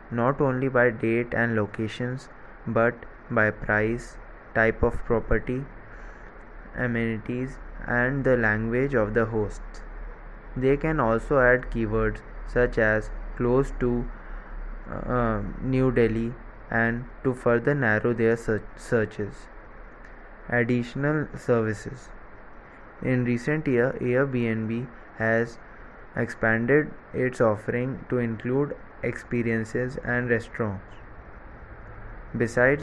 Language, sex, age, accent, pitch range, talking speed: English, male, 20-39, Indian, 110-125 Hz, 100 wpm